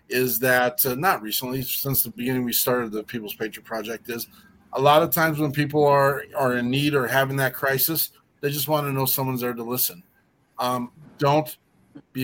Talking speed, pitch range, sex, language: 200 wpm, 125-150 Hz, male, English